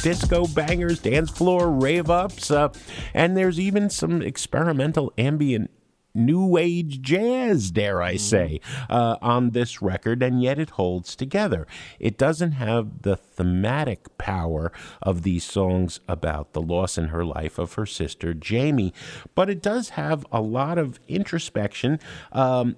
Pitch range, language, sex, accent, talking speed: 100-155 Hz, English, male, American, 145 wpm